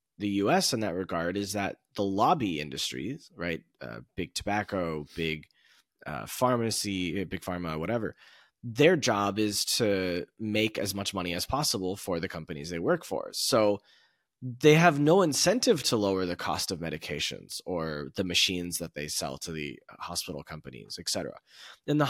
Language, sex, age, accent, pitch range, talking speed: English, male, 20-39, American, 90-145 Hz, 165 wpm